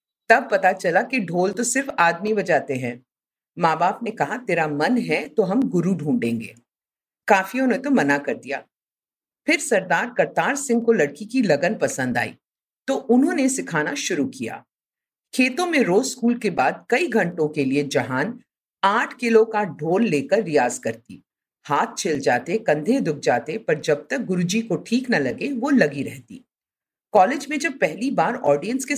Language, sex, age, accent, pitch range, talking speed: Hindi, female, 50-69, native, 160-245 Hz, 175 wpm